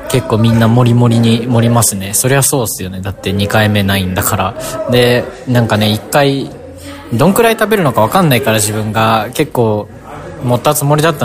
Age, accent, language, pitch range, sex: 20-39, native, Japanese, 105-130 Hz, male